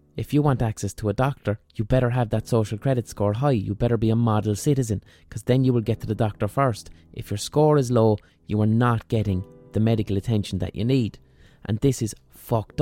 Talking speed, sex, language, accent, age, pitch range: 230 wpm, male, English, Irish, 20-39, 100-120 Hz